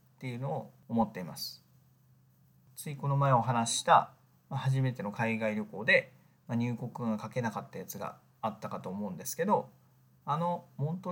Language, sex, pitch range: Japanese, male, 110-145 Hz